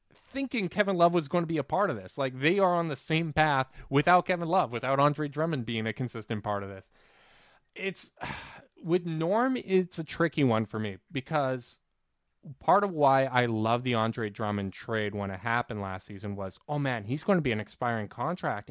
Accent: American